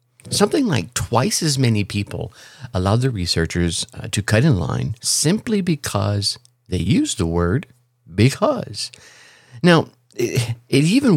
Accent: American